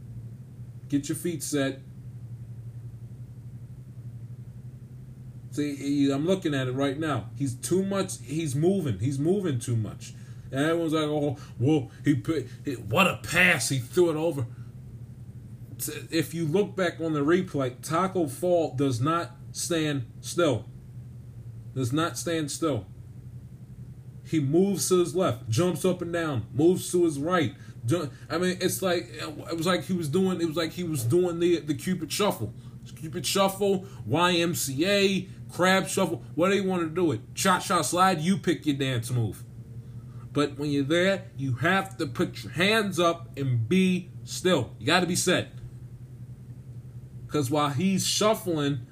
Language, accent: English, American